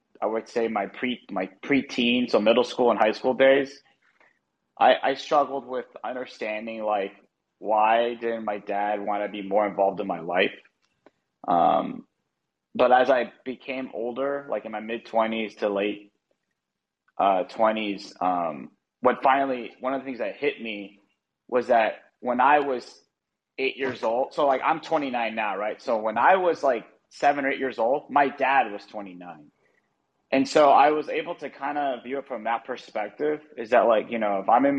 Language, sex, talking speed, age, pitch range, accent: English, male, 185 wpm, 30-49, 105-135 Hz, American